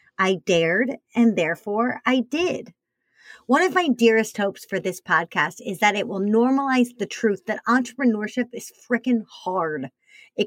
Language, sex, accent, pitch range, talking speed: English, female, American, 195-260 Hz, 155 wpm